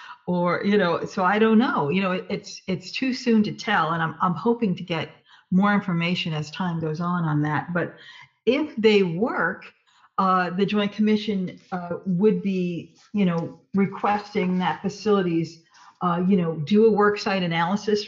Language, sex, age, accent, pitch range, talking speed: English, female, 50-69, American, 170-210 Hz, 175 wpm